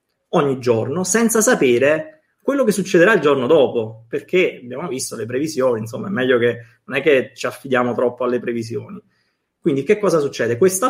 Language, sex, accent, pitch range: Italian, male, native, 125-210 Hz